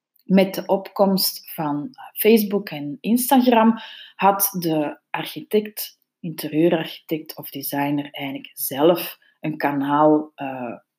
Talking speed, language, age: 100 wpm, Dutch, 30-49